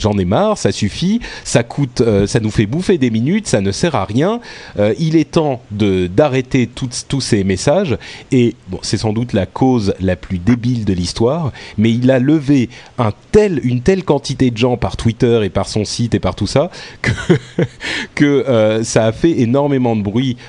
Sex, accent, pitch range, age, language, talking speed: male, French, 100-130 Hz, 30-49, French, 205 wpm